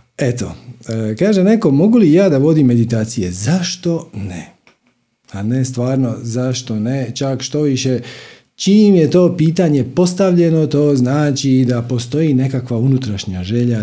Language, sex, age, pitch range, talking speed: Croatian, male, 50-69, 110-140 Hz, 135 wpm